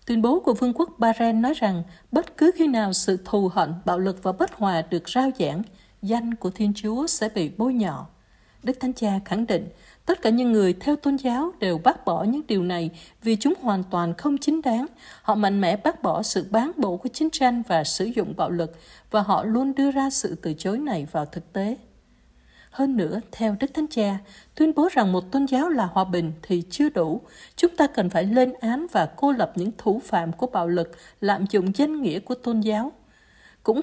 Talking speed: 220 wpm